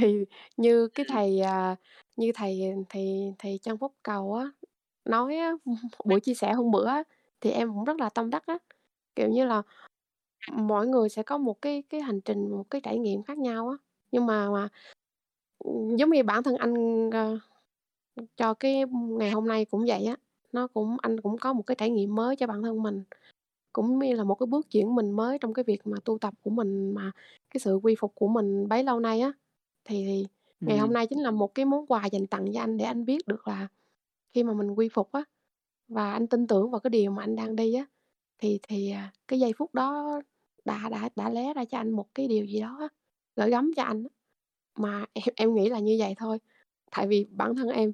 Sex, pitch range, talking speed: female, 210-255 Hz, 225 wpm